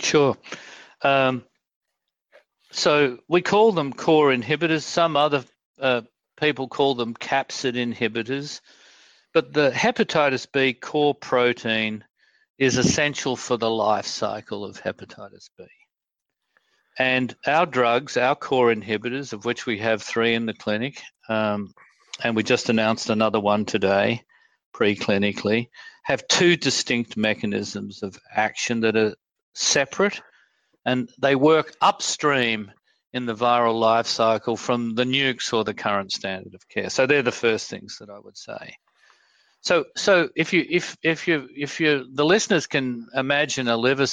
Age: 50-69